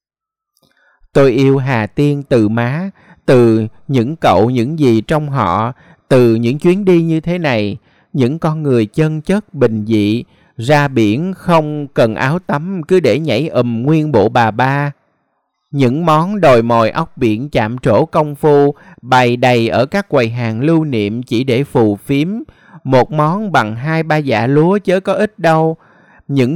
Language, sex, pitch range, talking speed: Vietnamese, male, 120-160 Hz, 170 wpm